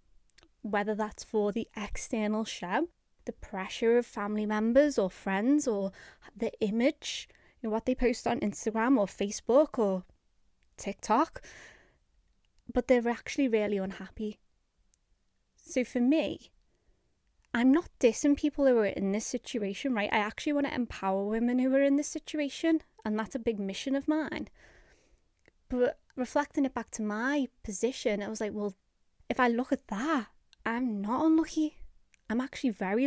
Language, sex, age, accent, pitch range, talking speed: English, female, 20-39, British, 210-255 Hz, 150 wpm